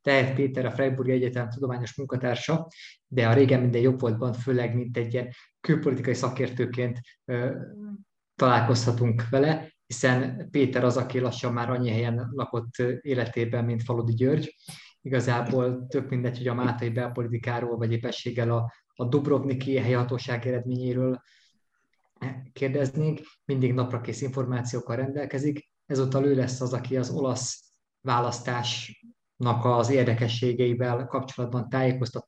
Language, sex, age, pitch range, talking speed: Hungarian, male, 20-39, 120-135 Hz, 120 wpm